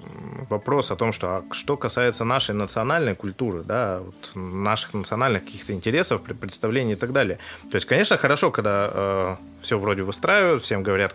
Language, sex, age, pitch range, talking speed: Russian, male, 20-39, 95-115 Hz, 165 wpm